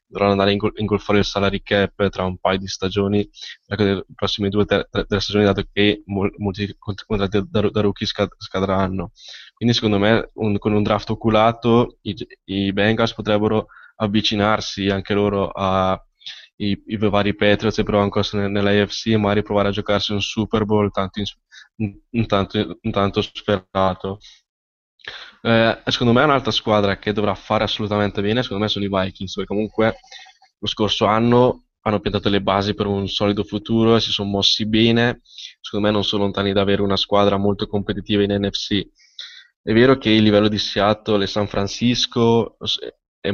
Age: 10-29